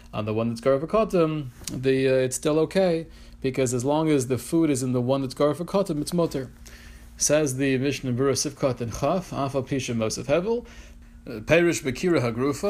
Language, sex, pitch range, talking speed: English, male, 125-170 Hz, 170 wpm